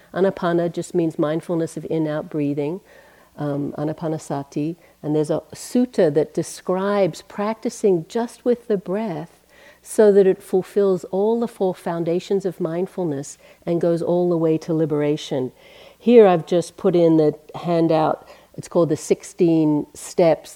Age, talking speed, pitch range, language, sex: 50-69, 145 wpm, 155-180 Hz, English, female